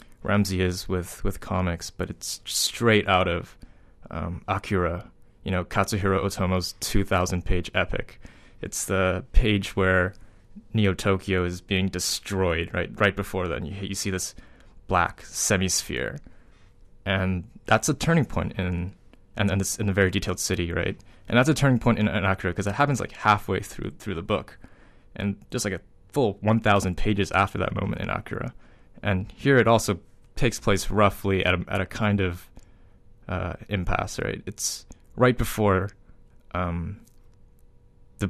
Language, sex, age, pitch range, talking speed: English, male, 20-39, 90-105 Hz, 160 wpm